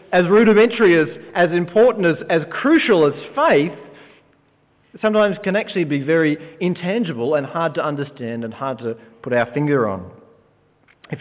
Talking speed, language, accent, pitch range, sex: 150 wpm, English, Australian, 160-200 Hz, male